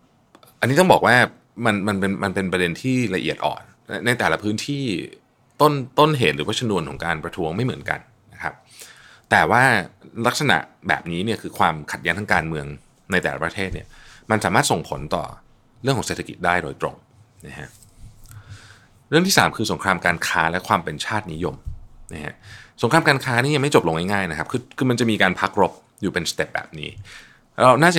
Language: Thai